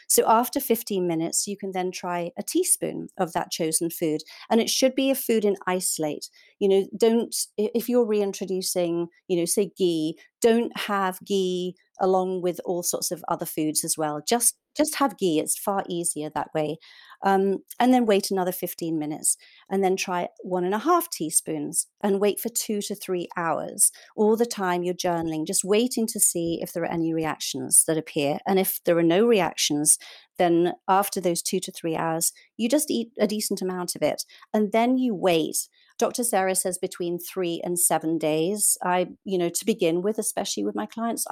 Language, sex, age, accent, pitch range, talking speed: English, female, 40-59, British, 170-210 Hz, 195 wpm